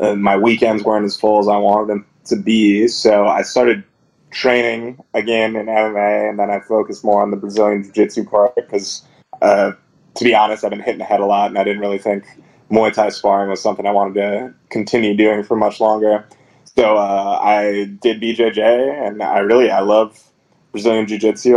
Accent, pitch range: American, 105-115 Hz